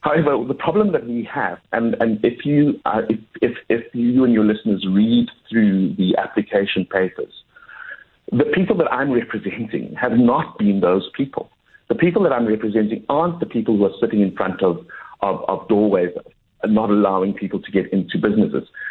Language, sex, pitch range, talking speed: English, male, 105-140 Hz, 170 wpm